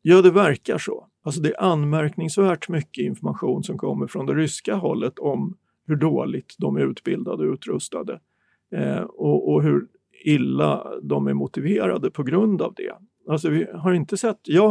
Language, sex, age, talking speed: English, male, 50-69, 150 wpm